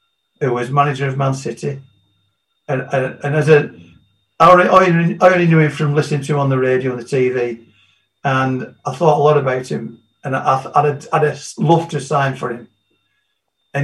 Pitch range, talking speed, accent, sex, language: 130-150 Hz, 195 wpm, British, male, English